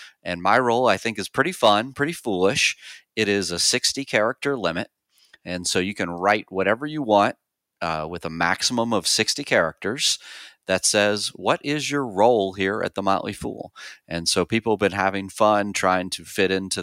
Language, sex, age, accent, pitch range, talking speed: English, male, 30-49, American, 85-105 Hz, 190 wpm